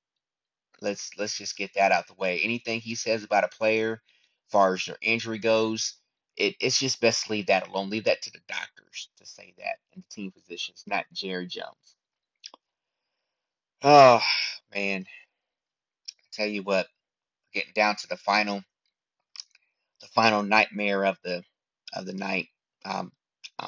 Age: 30-49